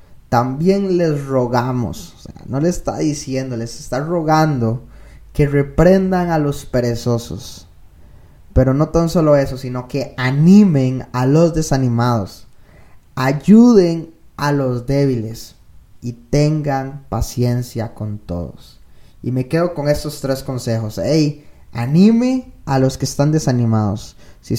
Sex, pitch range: male, 125-155 Hz